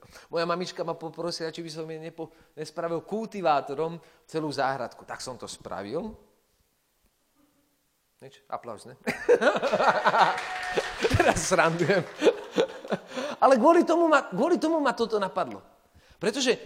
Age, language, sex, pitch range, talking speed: 30-49, Slovak, male, 170-250 Hz, 110 wpm